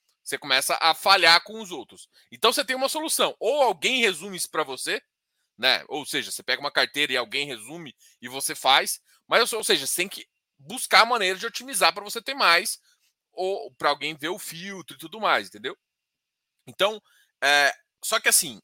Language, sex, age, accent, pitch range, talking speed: Portuguese, male, 20-39, Brazilian, 160-245 Hz, 195 wpm